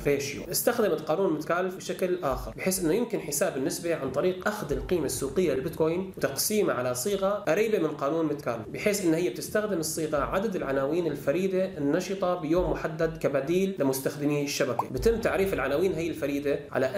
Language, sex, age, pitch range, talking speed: Arabic, male, 30-49, 145-190 Hz, 155 wpm